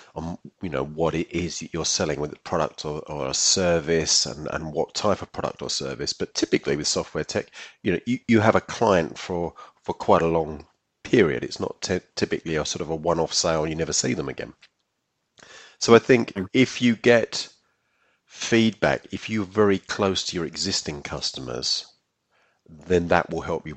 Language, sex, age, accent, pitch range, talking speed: English, male, 40-59, British, 80-100 Hz, 195 wpm